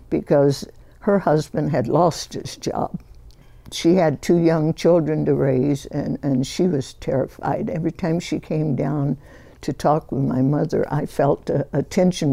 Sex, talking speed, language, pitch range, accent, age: female, 165 wpm, English, 145-185 Hz, American, 60-79